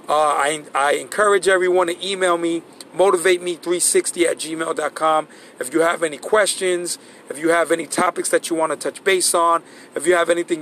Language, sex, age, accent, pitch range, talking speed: English, male, 40-59, American, 155-195 Hz, 180 wpm